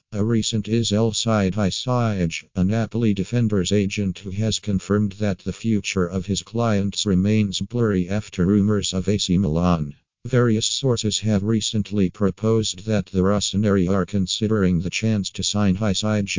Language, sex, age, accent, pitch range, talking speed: Italian, male, 50-69, American, 95-110 Hz, 145 wpm